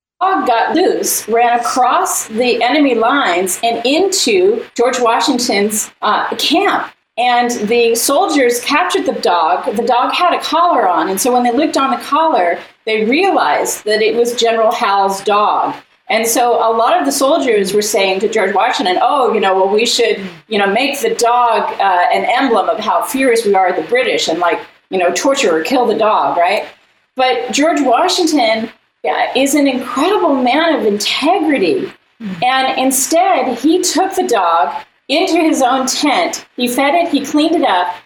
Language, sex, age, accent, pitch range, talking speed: English, female, 40-59, American, 230-330 Hz, 175 wpm